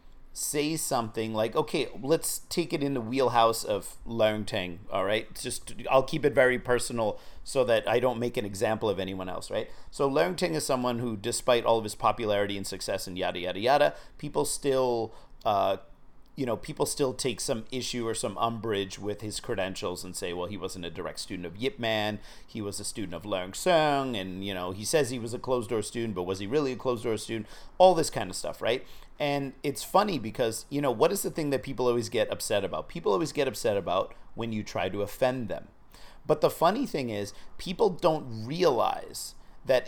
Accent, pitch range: American, 105-140 Hz